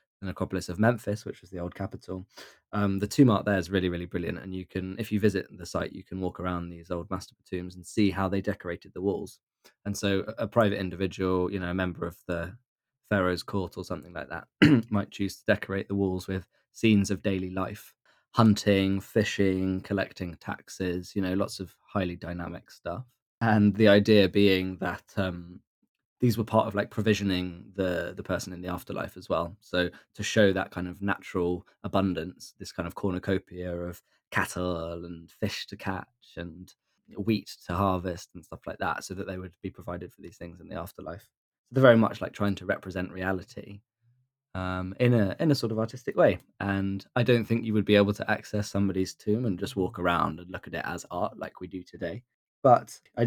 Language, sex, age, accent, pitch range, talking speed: English, male, 20-39, British, 90-105 Hz, 205 wpm